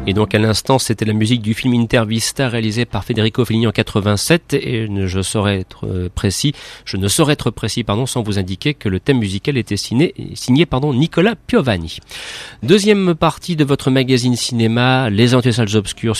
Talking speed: 195 wpm